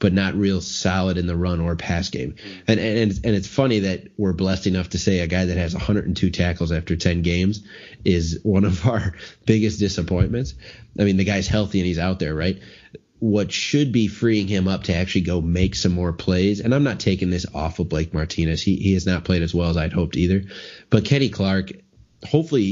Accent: American